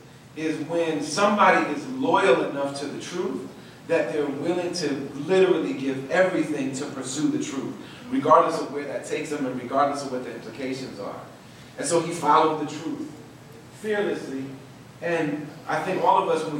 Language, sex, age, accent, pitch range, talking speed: English, male, 40-59, American, 145-180 Hz, 170 wpm